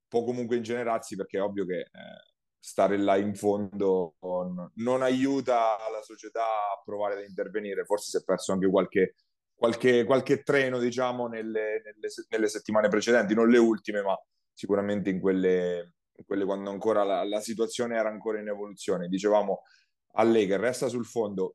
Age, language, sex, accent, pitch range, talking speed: 30-49, Italian, male, native, 100-120 Hz, 165 wpm